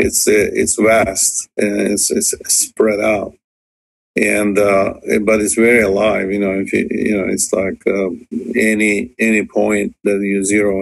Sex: male